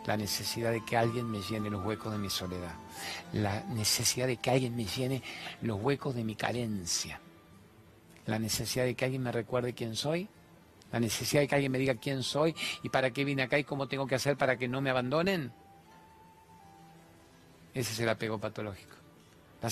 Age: 40-59